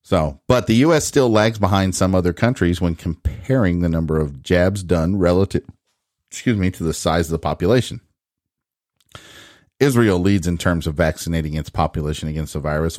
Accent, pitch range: American, 80-100 Hz